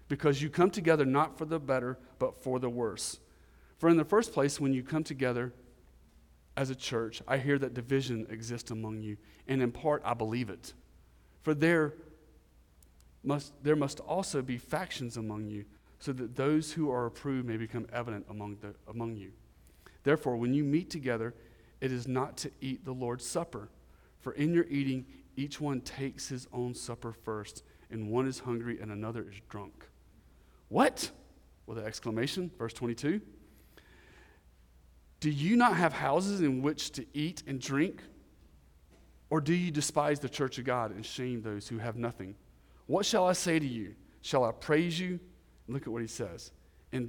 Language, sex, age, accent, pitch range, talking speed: English, male, 40-59, American, 100-140 Hz, 180 wpm